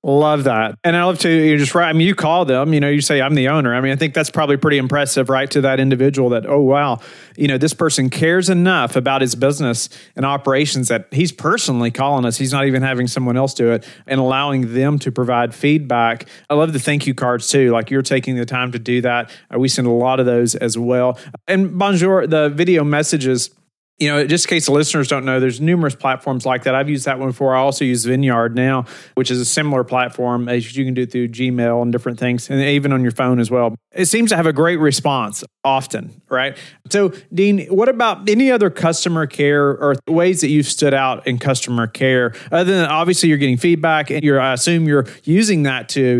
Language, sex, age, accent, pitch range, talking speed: English, male, 40-59, American, 125-155 Hz, 230 wpm